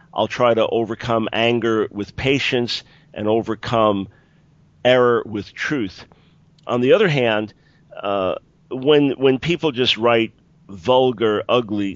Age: 50-69